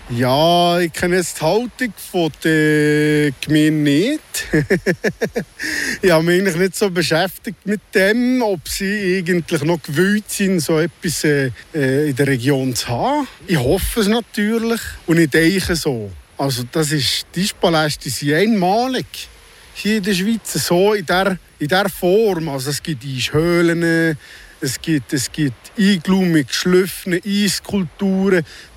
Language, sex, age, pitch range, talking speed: German, male, 50-69, 155-200 Hz, 130 wpm